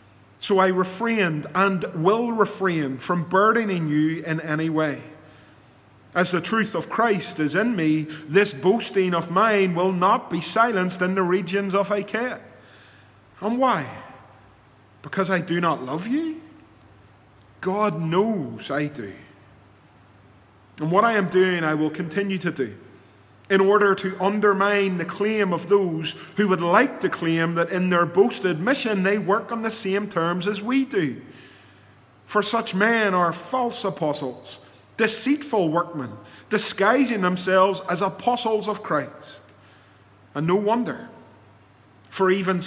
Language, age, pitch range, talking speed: English, 30-49, 135-200 Hz, 140 wpm